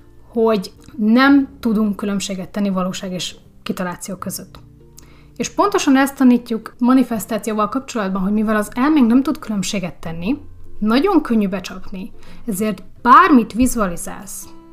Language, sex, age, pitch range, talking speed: Hungarian, female, 30-49, 195-240 Hz, 120 wpm